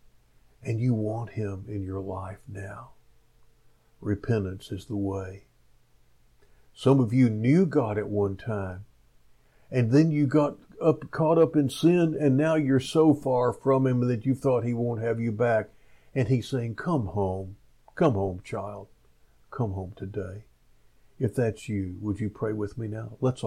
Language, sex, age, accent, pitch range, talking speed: English, male, 50-69, American, 105-130 Hz, 165 wpm